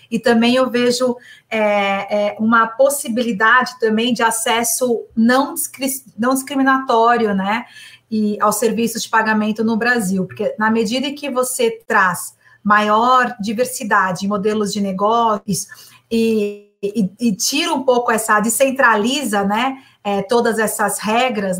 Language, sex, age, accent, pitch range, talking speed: Portuguese, female, 40-59, Brazilian, 210-250 Hz, 135 wpm